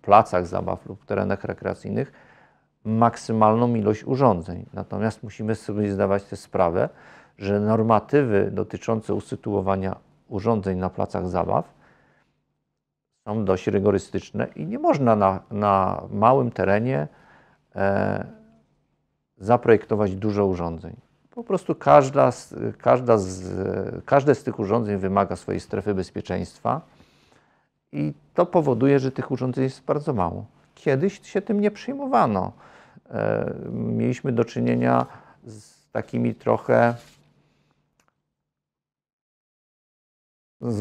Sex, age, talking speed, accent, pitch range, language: male, 40-59, 100 wpm, native, 95-120 Hz, Polish